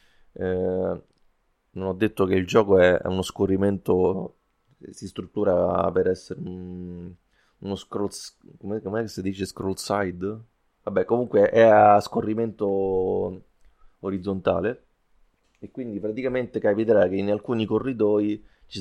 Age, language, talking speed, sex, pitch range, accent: 30-49, Italian, 115 wpm, male, 95-115 Hz, native